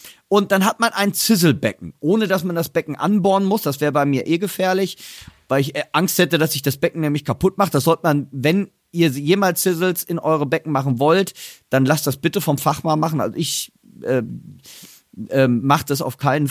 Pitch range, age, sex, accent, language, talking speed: 150-190 Hz, 40-59, male, German, German, 205 wpm